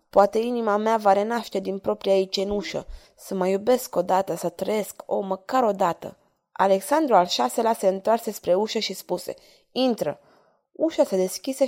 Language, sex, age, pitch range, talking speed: Romanian, female, 20-39, 195-240 Hz, 170 wpm